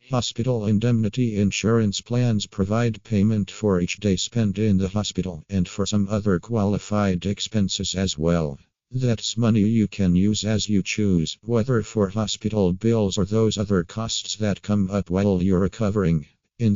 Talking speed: 160 wpm